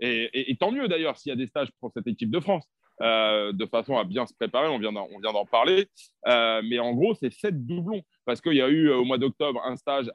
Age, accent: 30-49, French